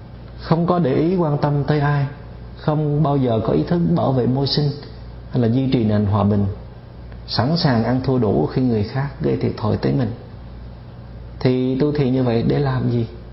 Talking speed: 205 wpm